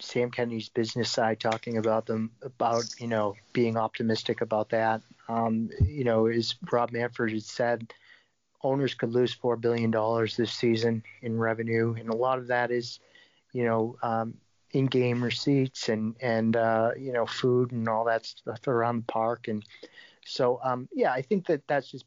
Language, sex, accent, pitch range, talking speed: English, male, American, 115-135 Hz, 180 wpm